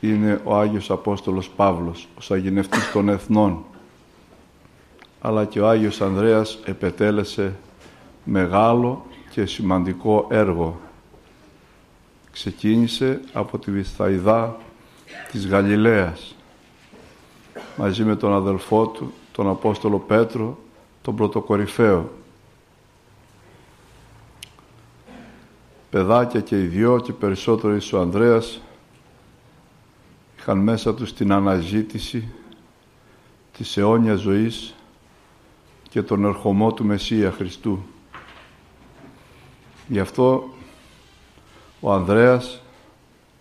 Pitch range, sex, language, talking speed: 100-115 Hz, male, Greek, 85 wpm